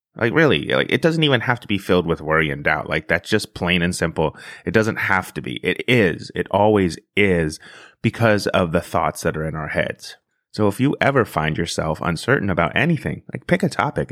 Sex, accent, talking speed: male, American, 220 wpm